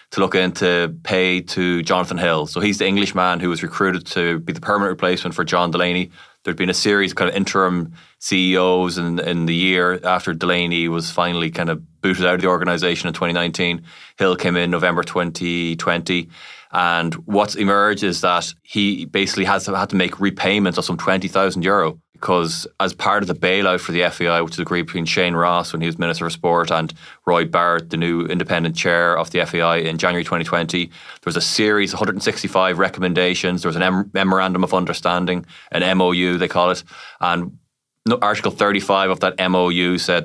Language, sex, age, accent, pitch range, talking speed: English, male, 20-39, Irish, 85-95 Hz, 200 wpm